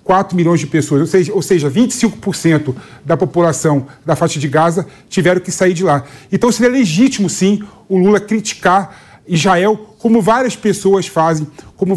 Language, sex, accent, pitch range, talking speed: Portuguese, male, Brazilian, 165-220 Hz, 155 wpm